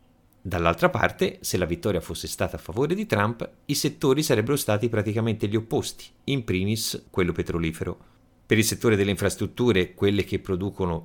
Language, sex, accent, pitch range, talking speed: Italian, male, native, 95-125 Hz, 165 wpm